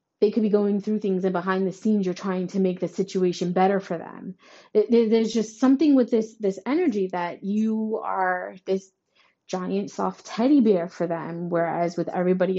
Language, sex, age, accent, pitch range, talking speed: English, female, 20-39, American, 190-225 Hz, 185 wpm